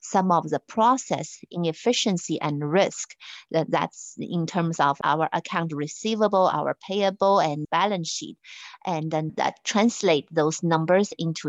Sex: female